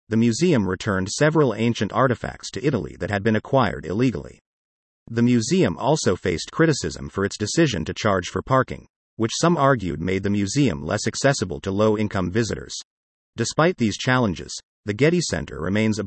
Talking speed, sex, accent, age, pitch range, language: 165 wpm, male, American, 40-59, 95-130 Hz, English